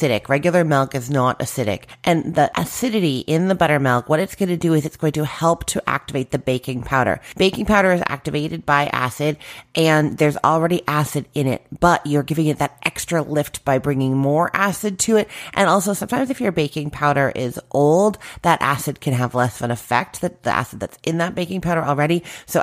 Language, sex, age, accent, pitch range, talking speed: English, female, 30-49, American, 135-170 Hz, 205 wpm